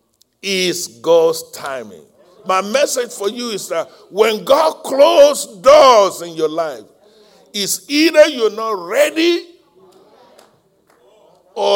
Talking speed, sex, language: 110 wpm, male, English